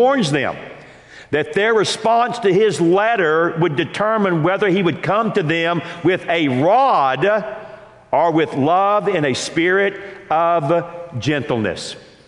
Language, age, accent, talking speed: English, 50-69, American, 130 wpm